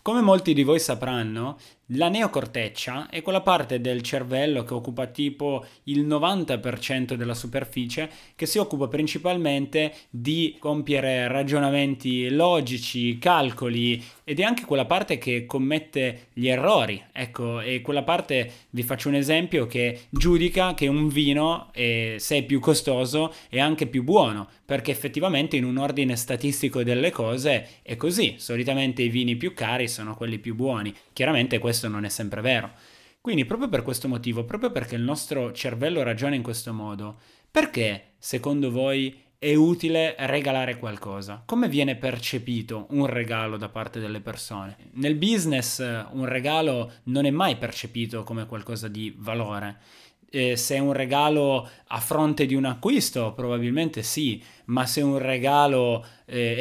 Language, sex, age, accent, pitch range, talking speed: Italian, male, 20-39, native, 120-145 Hz, 155 wpm